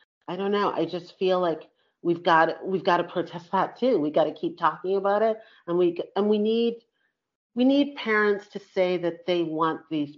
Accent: American